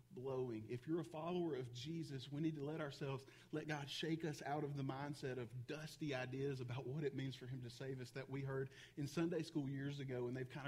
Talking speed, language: 240 wpm, English